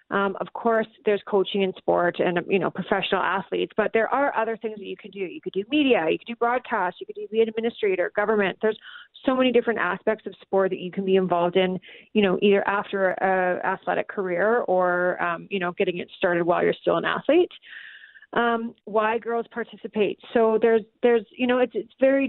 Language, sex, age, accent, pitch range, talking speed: English, female, 30-49, American, 190-230 Hz, 215 wpm